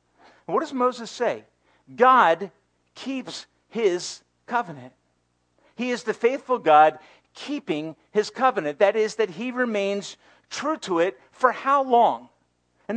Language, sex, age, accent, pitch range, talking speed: English, male, 50-69, American, 185-260 Hz, 130 wpm